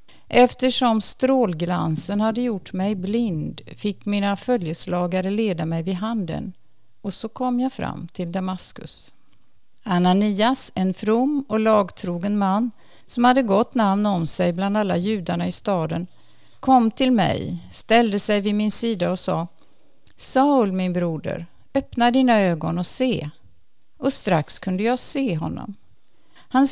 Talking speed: 140 wpm